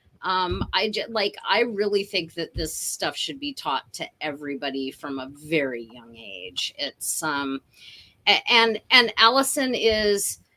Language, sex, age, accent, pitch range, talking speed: English, female, 30-49, American, 170-230 Hz, 150 wpm